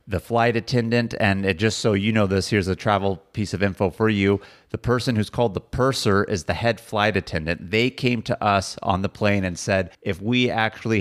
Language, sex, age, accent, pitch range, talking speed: English, male, 30-49, American, 95-115 Hz, 225 wpm